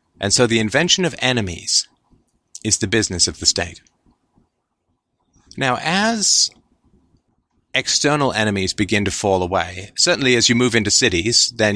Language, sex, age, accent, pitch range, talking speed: English, male, 30-49, American, 90-115 Hz, 140 wpm